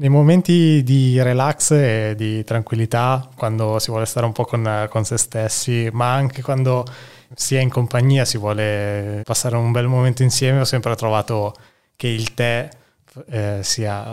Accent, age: native, 20-39